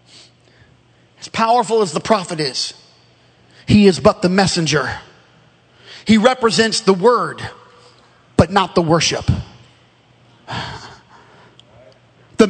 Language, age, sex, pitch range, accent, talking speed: English, 40-59, male, 195-275 Hz, American, 90 wpm